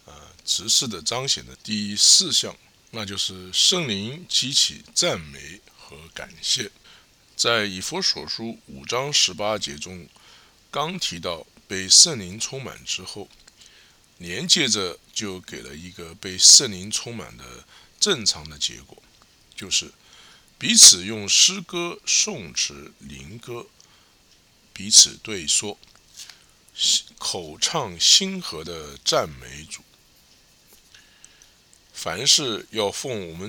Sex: male